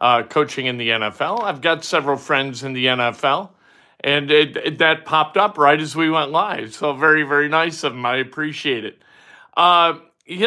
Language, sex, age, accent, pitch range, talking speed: English, male, 50-69, American, 150-190 Hz, 195 wpm